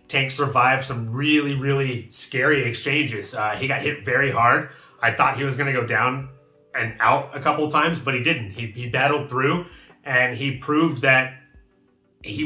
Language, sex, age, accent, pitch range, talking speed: English, male, 30-49, American, 125-150 Hz, 185 wpm